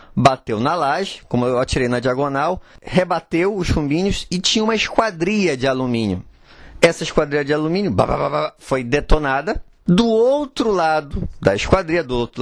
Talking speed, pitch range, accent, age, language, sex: 145 wpm, 140-190 Hz, Brazilian, 20-39, Portuguese, male